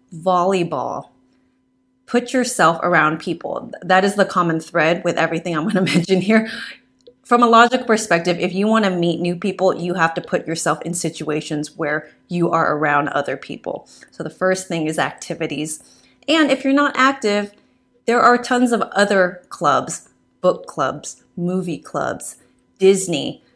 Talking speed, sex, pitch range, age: 160 wpm, female, 165-240 Hz, 30-49